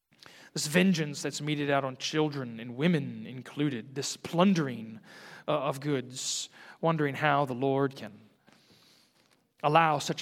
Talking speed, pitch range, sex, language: 130 wpm, 130-165 Hz, male, English